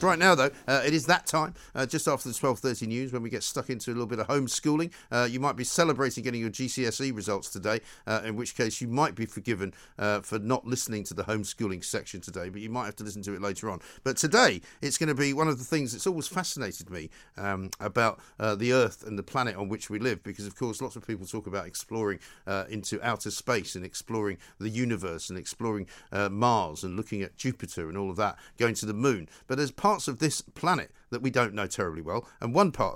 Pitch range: 105-135 Hz